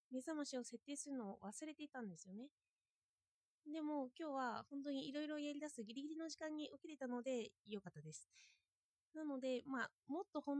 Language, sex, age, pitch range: Japanese, female, 20-39, 215-300 Hz